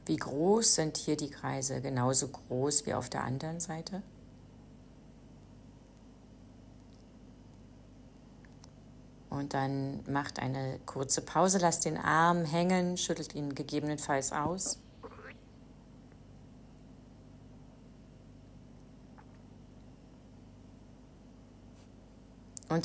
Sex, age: female, 30-49